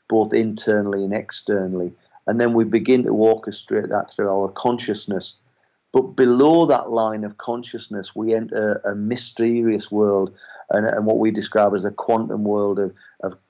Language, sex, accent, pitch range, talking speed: English, male, British, 100-115 Hz, 160 wpm